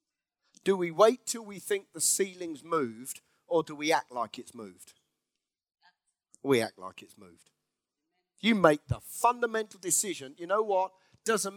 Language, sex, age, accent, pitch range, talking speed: English, male, 40-59, British, 155-225 Hz, 155 wpm